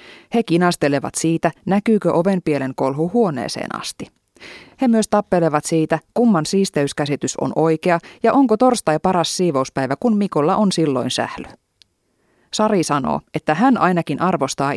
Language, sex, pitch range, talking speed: Finnish, female, 150-205 Hz, 130 wpm